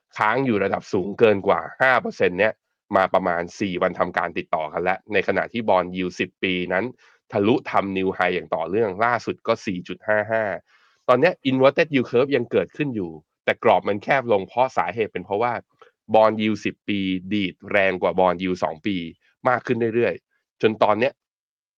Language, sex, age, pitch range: Thai, male, 20-39, 95-125 Hz